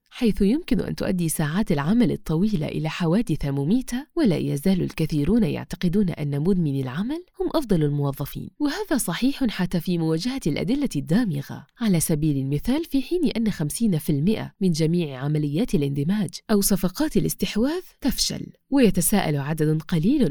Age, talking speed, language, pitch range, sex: 30-49, 135 wpm, Arabic, 160-240 Hz, female